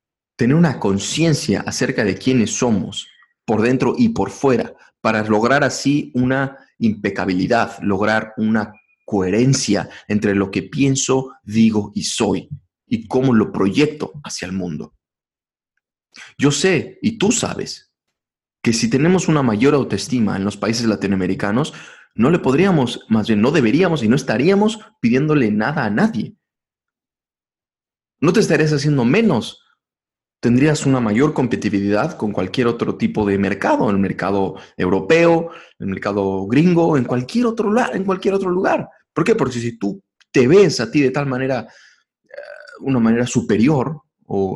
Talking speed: 150 wpm